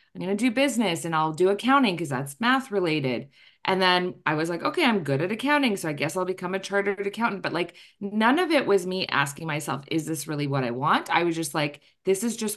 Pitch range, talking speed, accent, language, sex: 145-195 Hz, 255 wpm, American, English, female